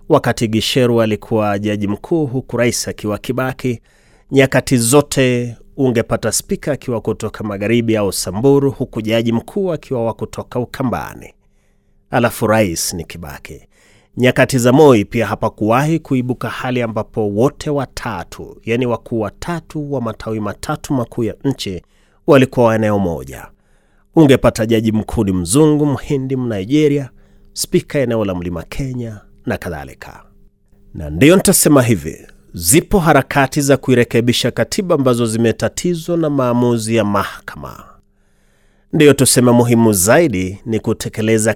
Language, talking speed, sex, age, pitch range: Swahili, 120 wpm, male, 30-49, 100-130 Hz